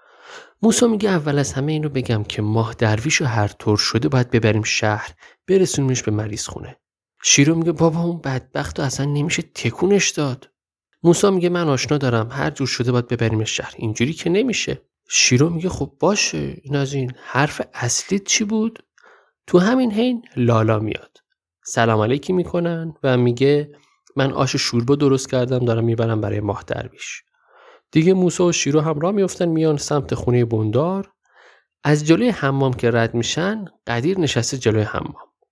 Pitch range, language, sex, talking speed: 120-180 Hz, Persian, male, 160 wpm